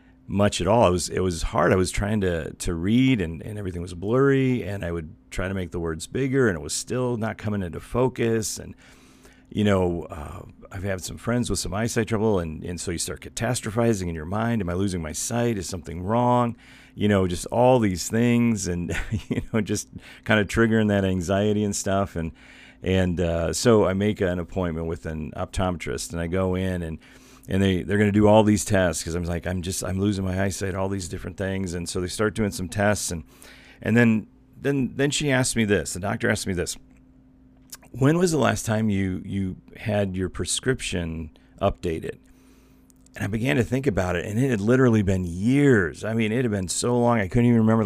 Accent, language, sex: American, English, male